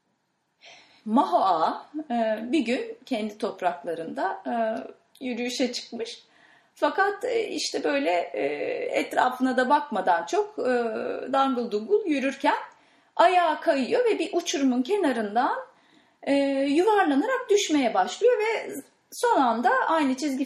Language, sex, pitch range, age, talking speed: English, female, 225-345 Hz, 30-49, 90 wpm